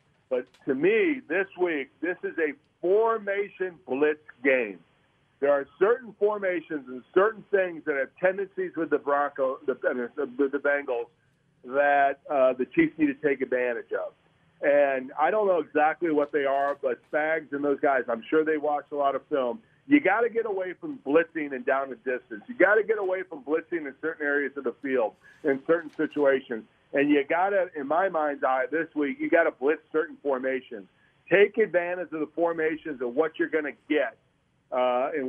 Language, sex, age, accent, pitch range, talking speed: English, male, 50-69, American, 140-185 Hz, 185 wpm